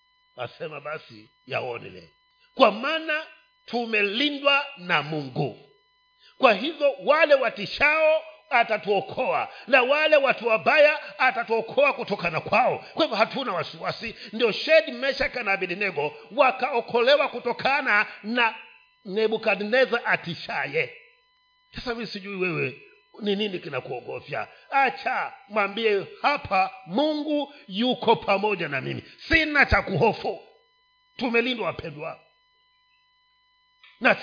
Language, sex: Swahili, male